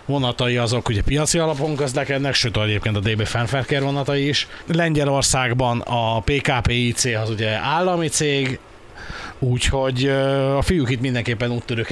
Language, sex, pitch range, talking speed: Hungarian, male, 120-140 Hz, 135 wpm